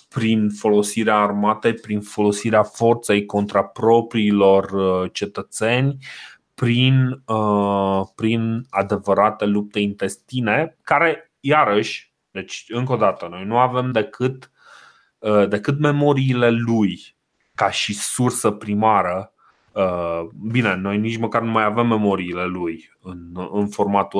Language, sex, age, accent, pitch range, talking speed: Romanian, male, 20-39, native, 105-130 Hz, 110 wpm